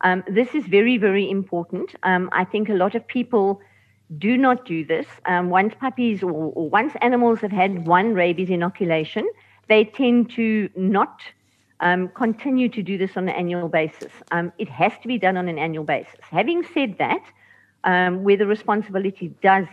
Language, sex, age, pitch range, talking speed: English, female, 50-69, 175-230 Hz, 180 wpm